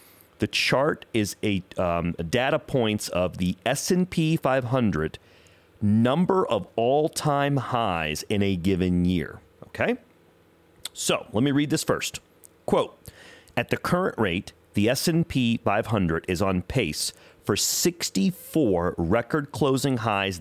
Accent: American